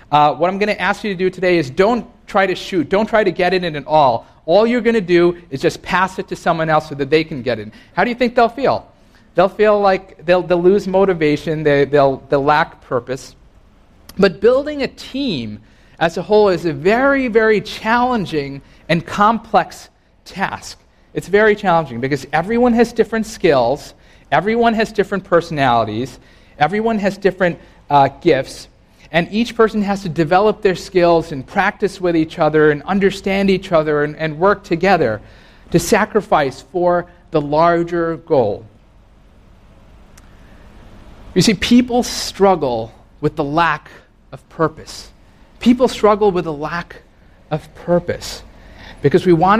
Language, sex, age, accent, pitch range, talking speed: English, male, 40-59, American, 145-200 Hz, 165 wpm